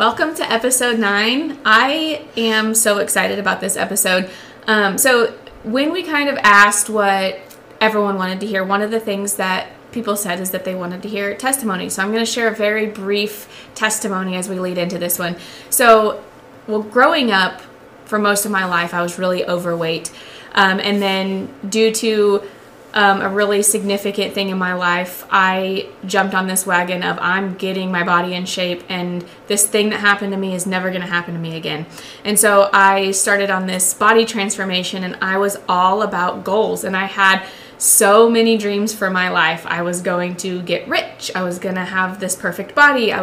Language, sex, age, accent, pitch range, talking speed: English, female, 20-39, American, 185-215 Hz, 200 wpm